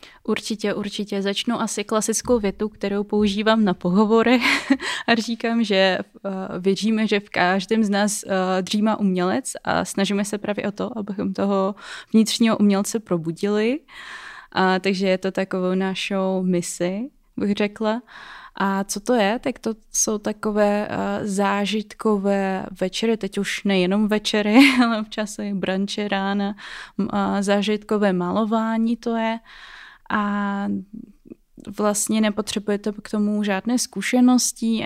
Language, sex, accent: Czech, female, native